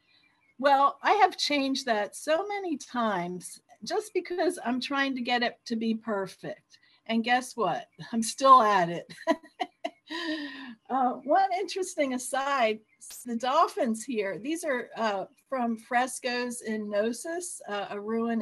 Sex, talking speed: female, 135 wpm